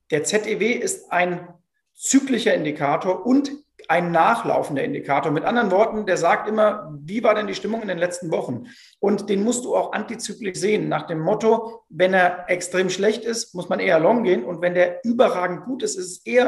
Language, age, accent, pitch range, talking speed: German, 40-59, German, 175-225 Hz, 195 wpm